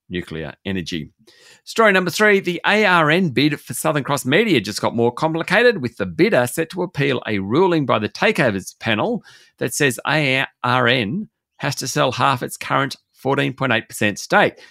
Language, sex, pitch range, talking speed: English, male, 110-155 Hz, 160 wpm